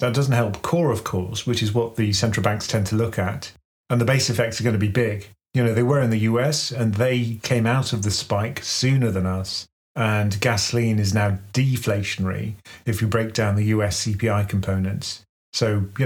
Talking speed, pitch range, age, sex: 215 wpm, 105-125 Hz, 40-59, male